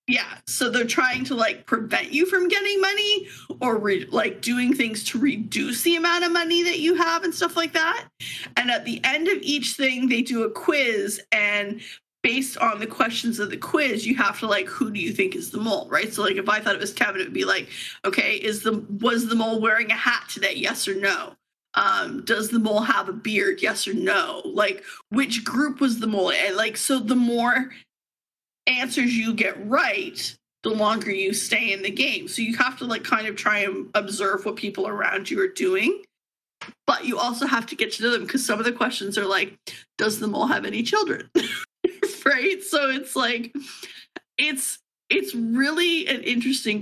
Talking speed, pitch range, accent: 210 wpm, 215-310 Hz, American